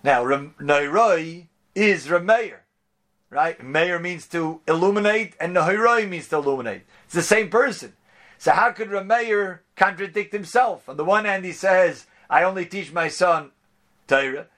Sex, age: male, 50-69